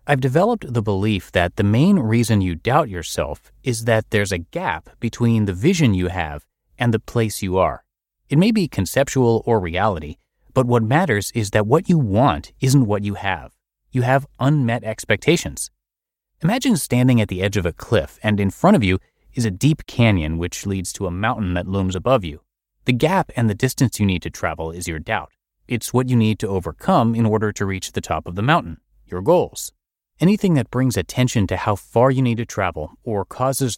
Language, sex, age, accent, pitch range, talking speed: English, male, 30-49, American, 95-125 Hz, 205 wpm